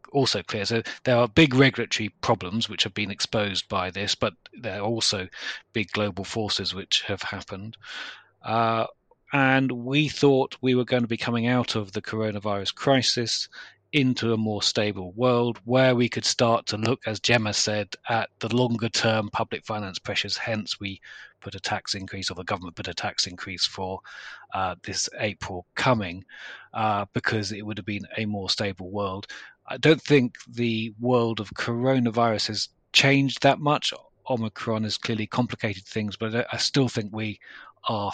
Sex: male